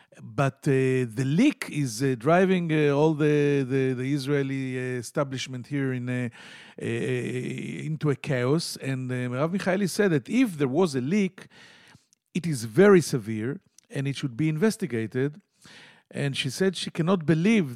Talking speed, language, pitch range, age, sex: 165 wpm, English, 125-180 Hz, 50-69, male